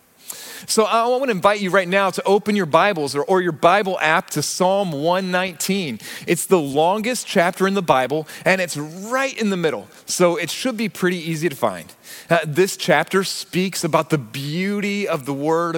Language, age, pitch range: English, 30-49, 145-185 Hz